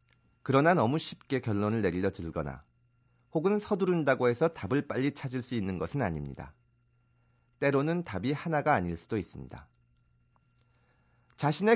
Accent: native